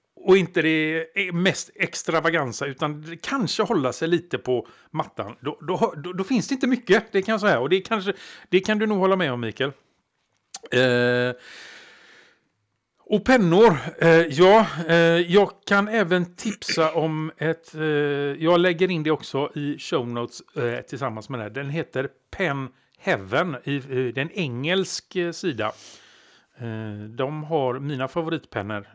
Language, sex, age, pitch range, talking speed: Swedish, male, 50-69, 130-180 Hz, 155 wpm